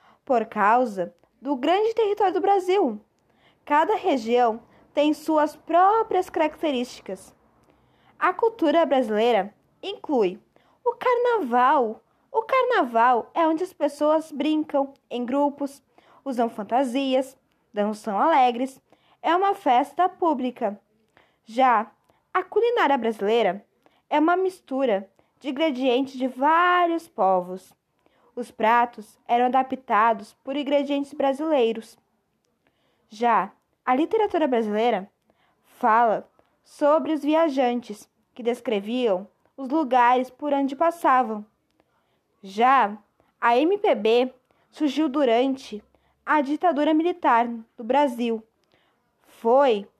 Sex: female